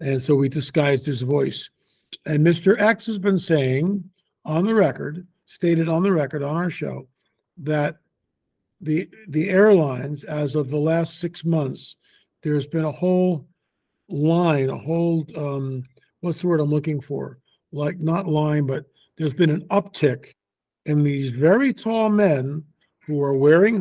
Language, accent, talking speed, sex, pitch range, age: English, American, 155 wpm, male, 150-180 Hz, 50-69